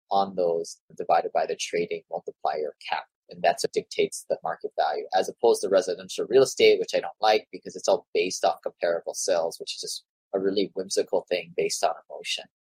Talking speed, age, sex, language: 200 wpm, 20-39, male, English